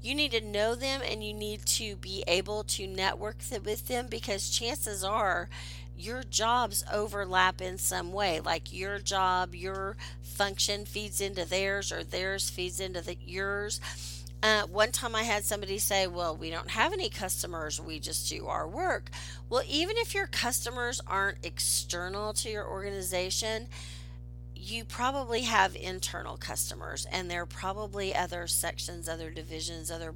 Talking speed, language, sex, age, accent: 160 wpm, English, female, 40-59, American